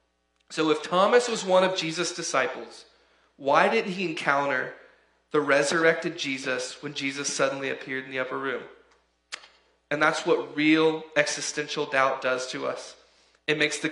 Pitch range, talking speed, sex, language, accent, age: 130-155 Hz, 150 wpm, male, English, American, 30-49